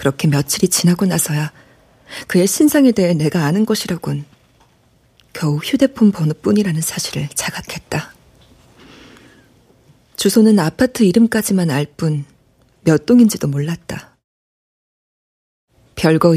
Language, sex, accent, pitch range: Korean, female, native, 150-195 Hz